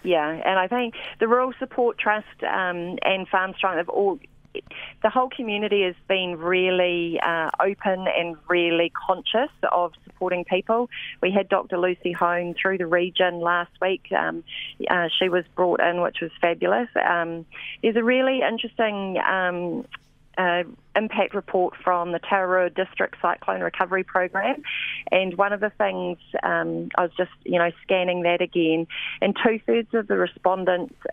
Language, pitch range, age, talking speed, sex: English, 170-195 Hz, 30-49, 160 wpm, female